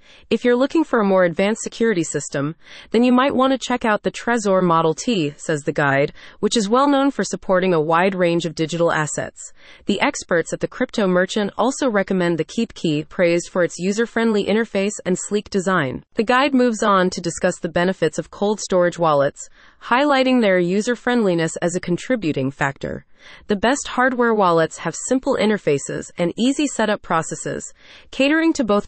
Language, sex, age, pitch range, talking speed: English, female, 30-49, 170-235 Hz, 180 wpm